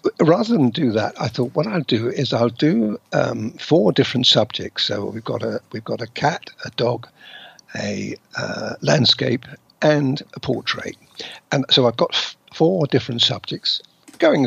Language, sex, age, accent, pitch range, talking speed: English, male, 60-79, British, 115-140 Hz, 170 wpm